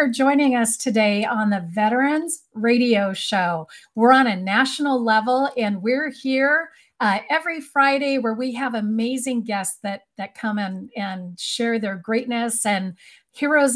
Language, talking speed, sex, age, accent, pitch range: English, 150 wpm, female, 40-59, American, 205-255 Hz